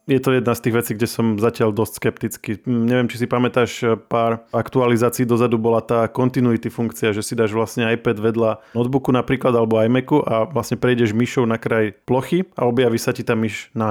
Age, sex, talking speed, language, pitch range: 20-39, male, 200 wpm, Slovak, 115-130 Hz